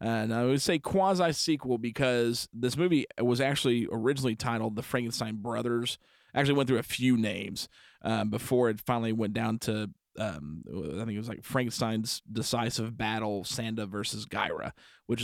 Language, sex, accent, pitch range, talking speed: English, male, American, 110-130 Hz, 175 wpm